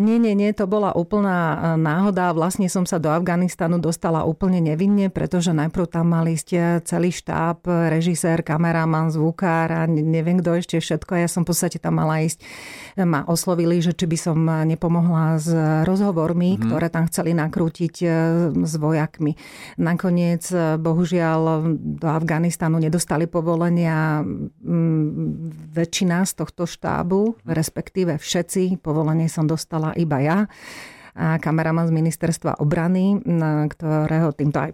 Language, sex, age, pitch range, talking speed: Slovak, female, 40-59, 160-175 Hz, 130 wpm